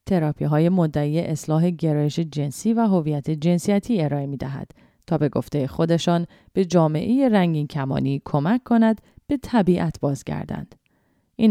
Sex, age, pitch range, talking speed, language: female, 30-49, 155-200 Hz, 125 wpm, English